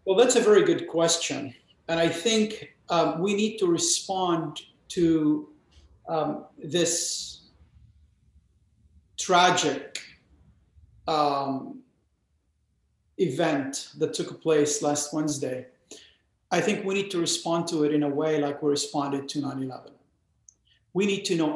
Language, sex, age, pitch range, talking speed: English, male, 50-69, 145-185 Hz, 125 wpm